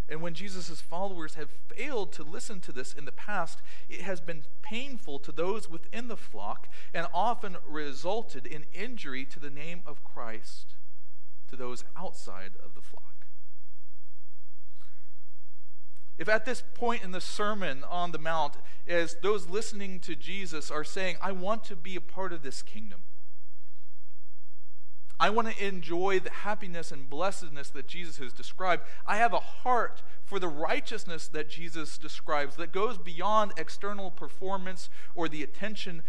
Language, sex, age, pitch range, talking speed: English, male, 40-59, 135-195 Hz, 155 wpm